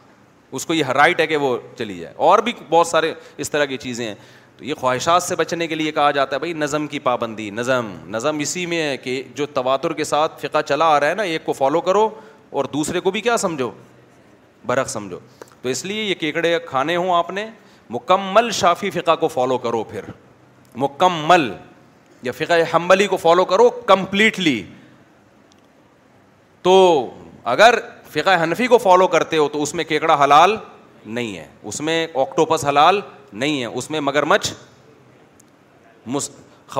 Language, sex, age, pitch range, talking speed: Urdu, male, 30-49, 140-180 Hz, 175 wpm